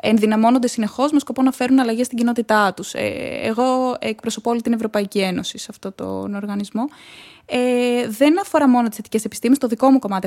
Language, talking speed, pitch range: Greek, 180 wpm, 220-270 Hz